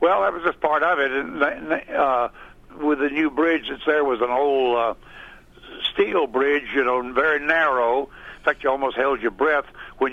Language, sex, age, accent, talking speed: English, male, 60-79, American, 195 wpm